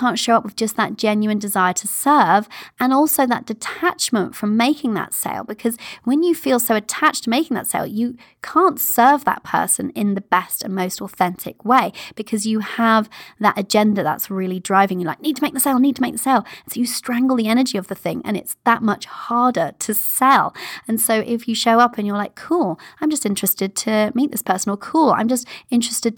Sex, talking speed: female, 220 wpm